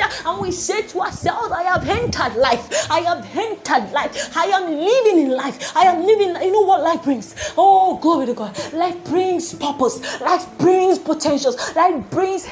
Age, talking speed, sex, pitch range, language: 20-39, 180 wpm, female, 285-390 Hz, English